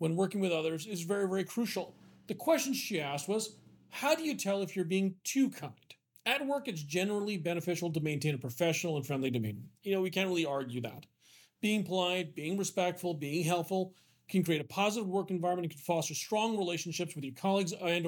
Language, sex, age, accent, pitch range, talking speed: English, male, 40-59, American, 160-205 Hz, 205 wpm